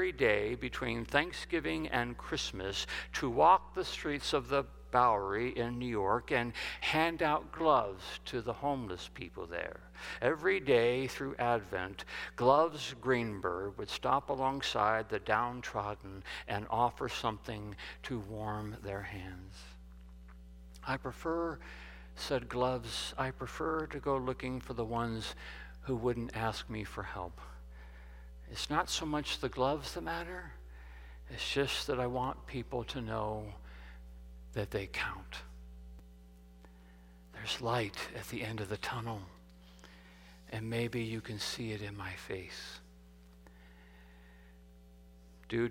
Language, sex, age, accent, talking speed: English, male, 60-79, American, 125 wpm